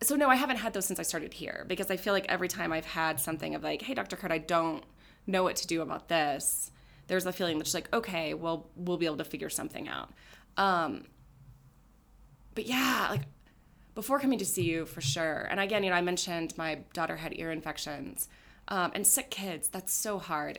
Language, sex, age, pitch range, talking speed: English, female, 20-39, 150-190 Hz, 220 wpm